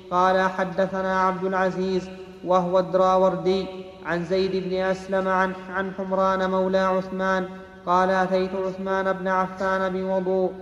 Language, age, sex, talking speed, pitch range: Arabic, 30-49, male, 115 wpm, 185-190 Hz